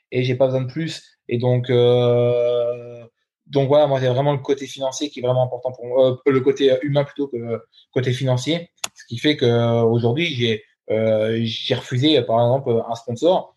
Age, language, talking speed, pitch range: 20-39, French, 205 wpm, 115-140 Hz